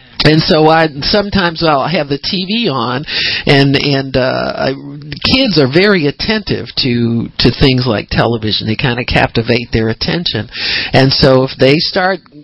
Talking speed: 160 wpm